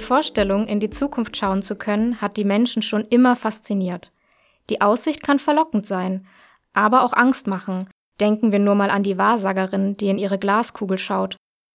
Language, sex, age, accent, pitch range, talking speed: German, female, 20-39, German, 200-255 Hz, 175 wpm